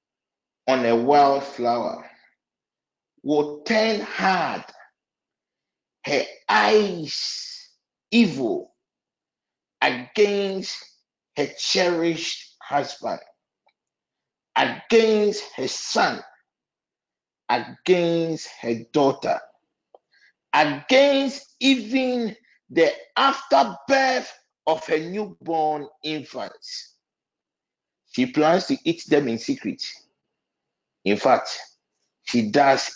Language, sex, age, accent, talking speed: English, male, 50-69, Nigerian, 70 wpm